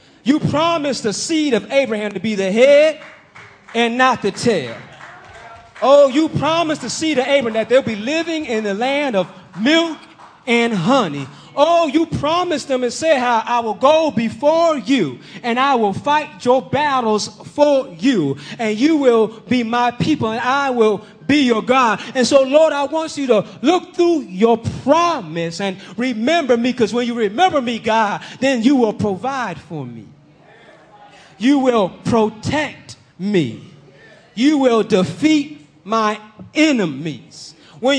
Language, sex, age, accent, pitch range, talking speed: English, male, 30-49, American, 215-295 Hz, 155 wpm